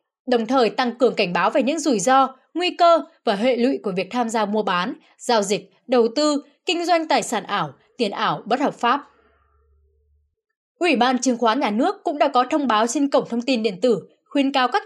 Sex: female